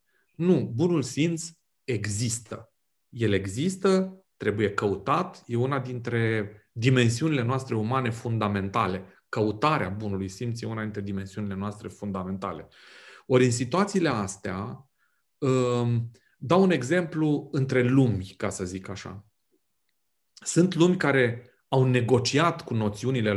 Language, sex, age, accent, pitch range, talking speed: Romanian, male, 30-49, native, 105-150 Hz, 115 wpm